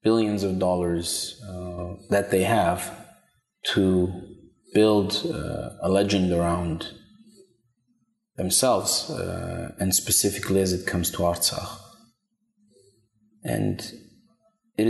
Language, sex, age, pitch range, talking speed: English, male, 30-49, 90-115 Hz, 95 wpm